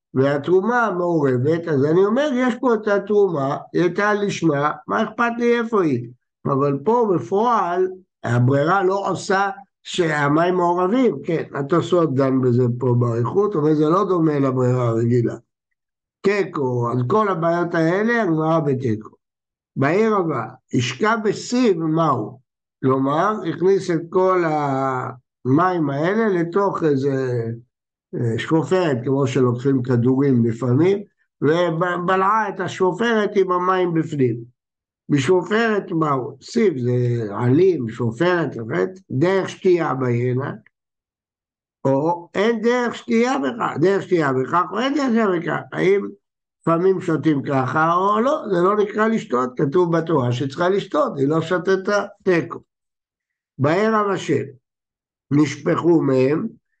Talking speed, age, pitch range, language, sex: 115 wpm, 60-79, 135-195 Hz, Hebrew, male